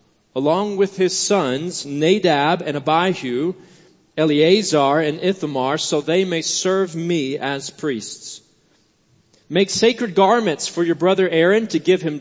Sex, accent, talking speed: male, American, 135 wpm